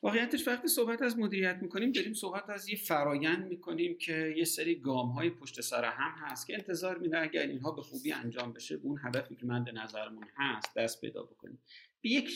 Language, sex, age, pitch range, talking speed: Persian, male, 50-69, 120-170 Hz, 195 wpm